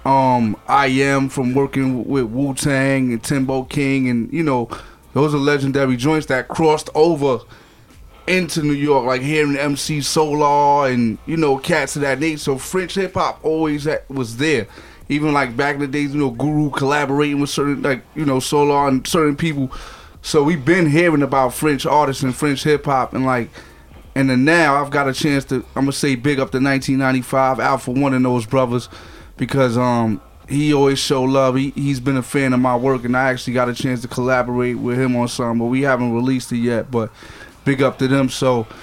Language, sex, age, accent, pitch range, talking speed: French, male, 20-39, American, 125-145 Hz, 205 wpm